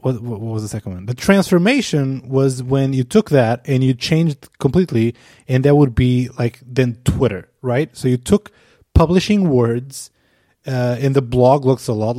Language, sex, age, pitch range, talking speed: English, male, 20-39, 110-140 Hz, 175 wpm